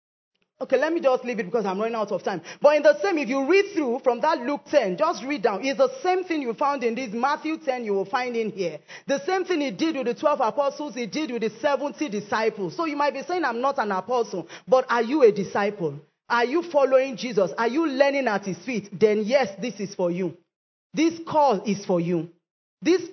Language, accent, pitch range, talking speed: English, Nigerian, 215-285 Hz, 240 wpm